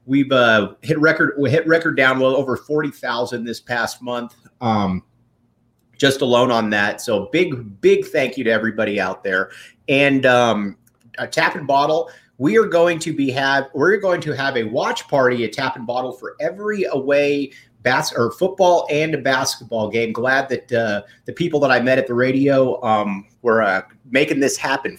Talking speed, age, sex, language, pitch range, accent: 185 wpm, 30-49, male, English, 125-180 Hz, American